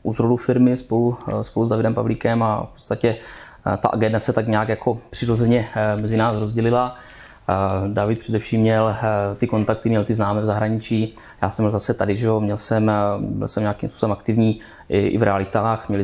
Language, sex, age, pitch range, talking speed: Czech, male, 20-39, 105-115 Hz, 185 wpm